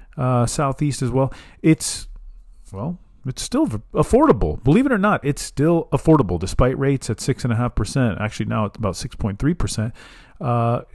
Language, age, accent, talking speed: English, 40-59, American, 135 wpm